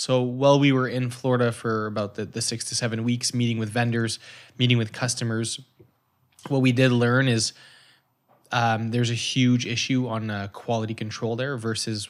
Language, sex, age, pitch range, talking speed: English, male, 20-39, 110-130 Hz, 180 wpm